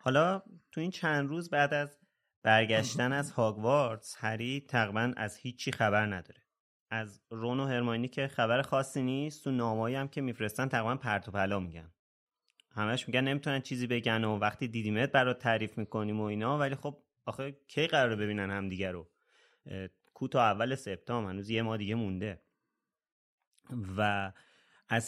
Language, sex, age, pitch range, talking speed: Persian, male, 30-49, 105-135 Hz, 155 wpm